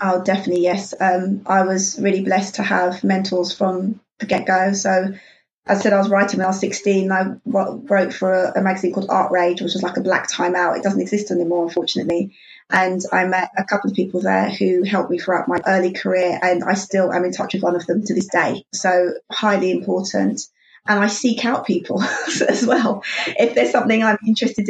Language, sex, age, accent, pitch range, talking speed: English, female, 20-39, British, 185-225 Hz, 215 wpm